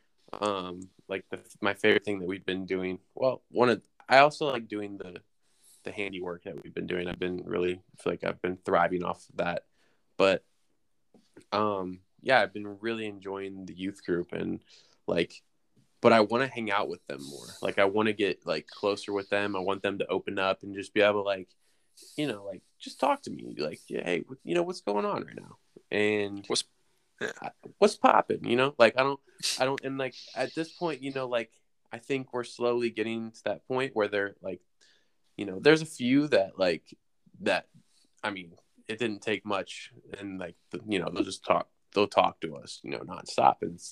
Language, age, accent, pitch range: English, 20-39, American, 95-120 Hz